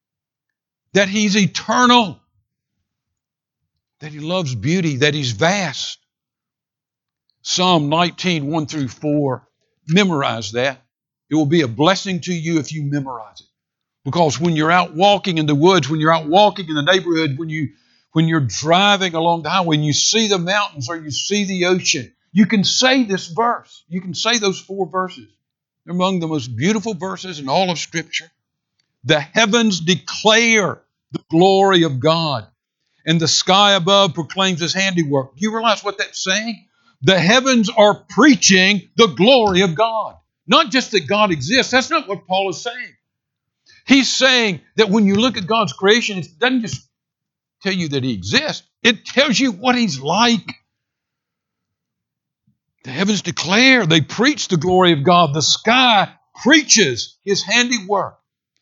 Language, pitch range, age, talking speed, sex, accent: English, 155-210 Hz, 60-79, 160 wpm, male, American